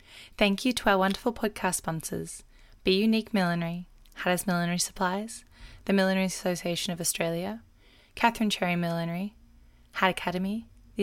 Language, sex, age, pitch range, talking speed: English, female, 10-29, 165-200 Hz, 130 wpm